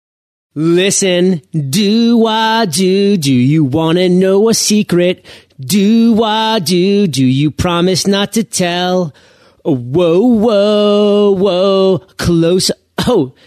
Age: 30-49